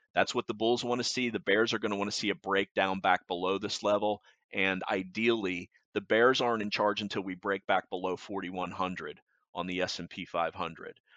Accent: American